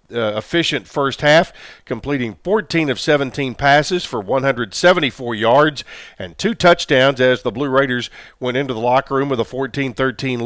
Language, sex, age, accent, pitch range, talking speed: English, male, 50-69, American, 125-150 Hz, 155 wpm